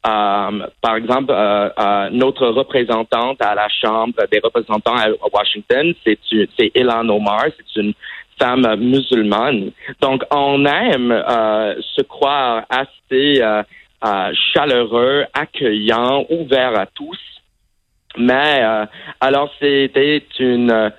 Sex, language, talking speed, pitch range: male, French, 115 wpm, 110-130 Hz